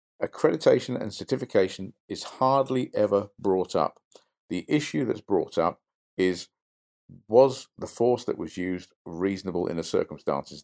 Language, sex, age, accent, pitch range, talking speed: English, male, 50-69, British, 85-110 Hz, 135 wpm